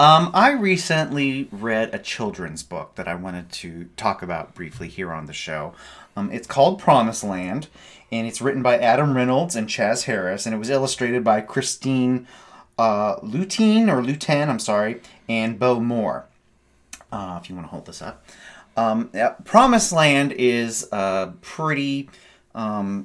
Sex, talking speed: male, 165 wpm